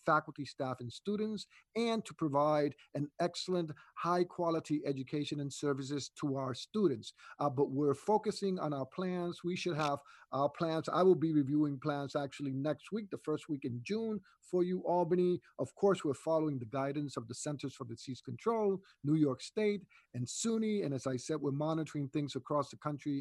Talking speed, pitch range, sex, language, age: 185 wpm, 135-170 Hz, male, English, 50-69